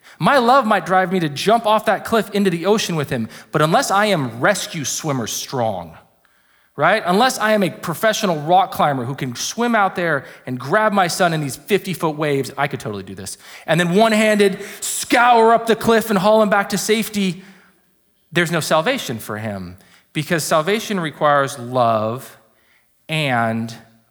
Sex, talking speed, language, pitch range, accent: male, 175 wpm, English, 120-185 Hz, American